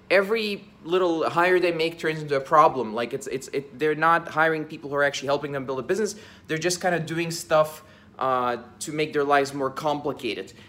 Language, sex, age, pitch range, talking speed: English, male, 20-39, 145-180 Hz, 215 wpm